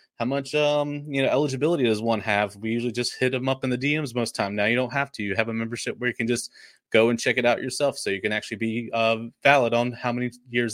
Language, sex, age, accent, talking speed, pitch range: English, male, 20-39, American, 280 wpm, 120-145 Hz